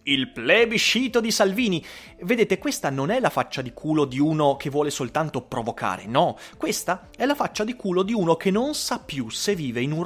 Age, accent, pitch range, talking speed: 30-49, native, 135-210 Hz, 210 wpm